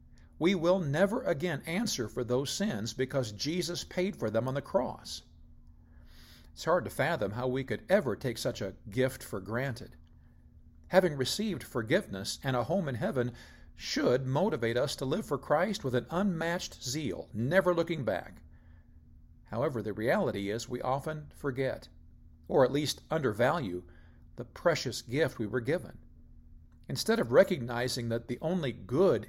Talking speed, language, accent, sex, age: 155 wpm, English, American, male, 50-69